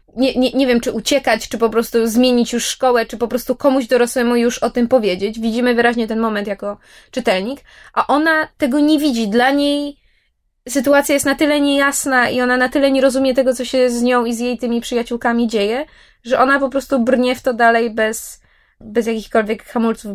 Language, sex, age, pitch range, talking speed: Polish, female, 20-39, 210-265 Hz, 205 wpm